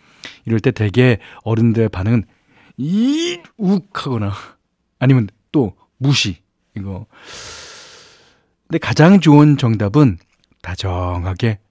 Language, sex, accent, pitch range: Korean, male, native, 100-145 Hz